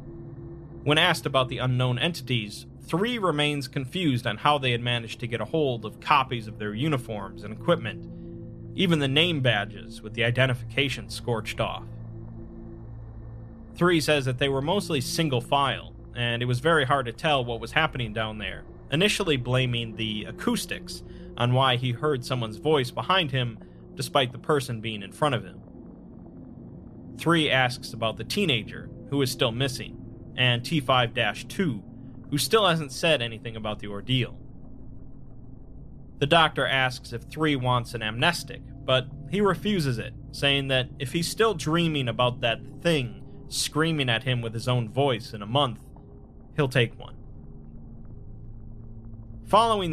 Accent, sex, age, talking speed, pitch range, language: American, male, 30-49, 155 wpm, 115-145 Hz, English